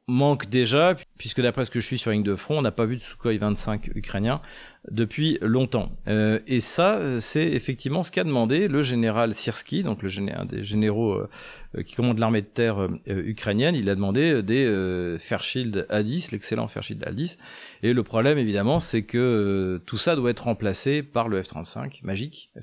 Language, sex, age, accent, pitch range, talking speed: French, male, 40-59, French, 100-125 Hz, 195 wpm